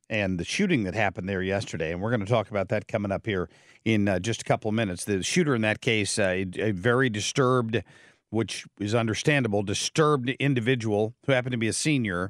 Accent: American